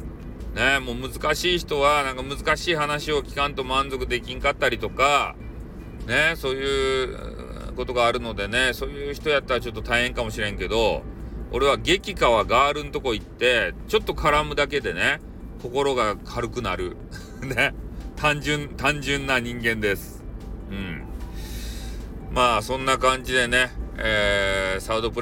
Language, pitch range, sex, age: Japanese, 100-135 Hz, male, 40-59